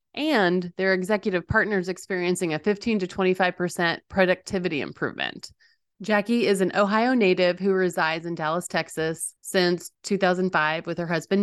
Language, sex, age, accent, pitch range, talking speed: English, female, 30-49, American, 180-210 Hz, 135 wpm